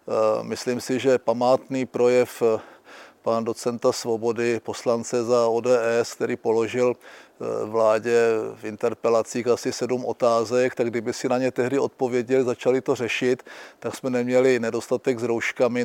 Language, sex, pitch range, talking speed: Czech, male, 115-130 Hz, 135 wpm